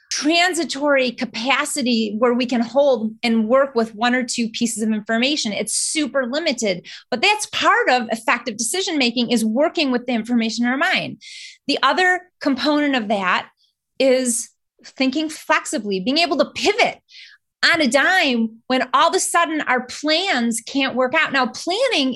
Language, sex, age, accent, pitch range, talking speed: English, female, 30-49, American, 240-310 Hz, 160 wpm